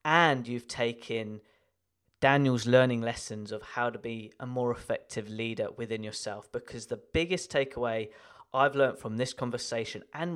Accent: British